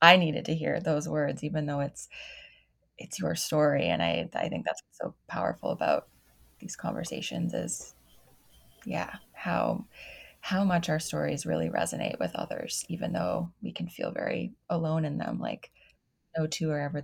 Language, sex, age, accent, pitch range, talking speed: English, female, 20-39, American, 155-180 Hz, 170 wpm